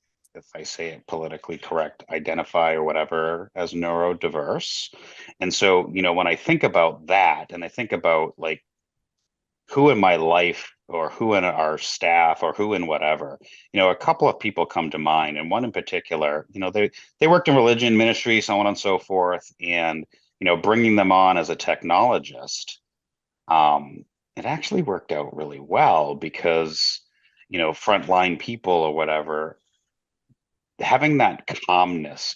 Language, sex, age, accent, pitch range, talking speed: English, male, 30-49, American, 80-100 Hz, 165 wpm